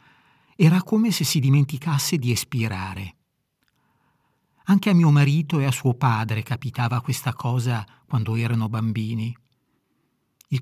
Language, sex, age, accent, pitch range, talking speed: Italian, male, 50-69, native, 120-145 Hz, 125 wpm